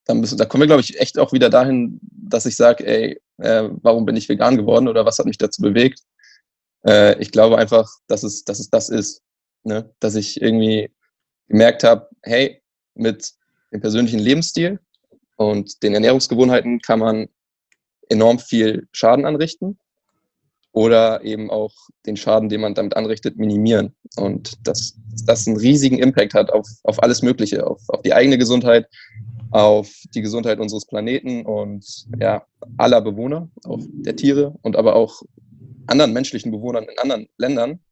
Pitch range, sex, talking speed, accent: 110-125 Hz, male, 165 wpm, German